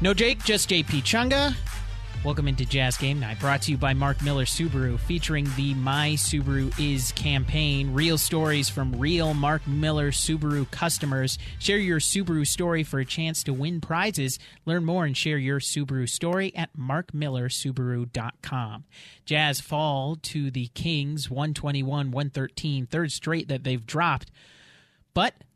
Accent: American